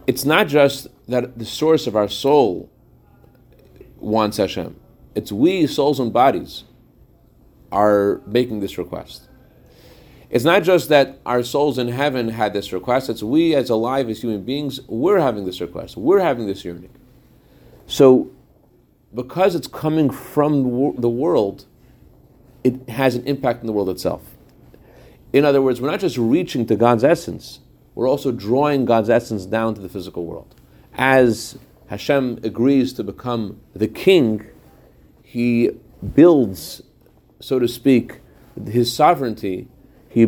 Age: 40-59